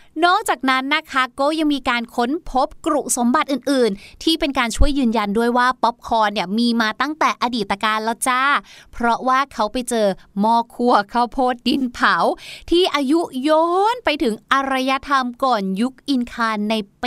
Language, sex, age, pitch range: Thai, female, 20-39, 225-305 Hz